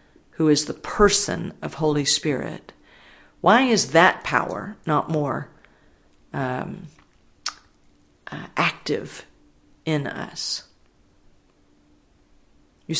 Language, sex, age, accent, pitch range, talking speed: English, female, 50-69, American, 135-180 Hz, 90 wpm